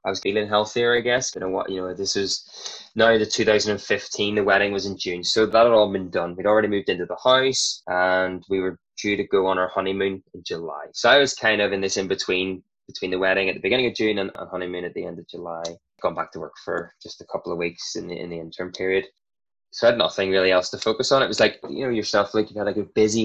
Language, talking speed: English, 260 wpm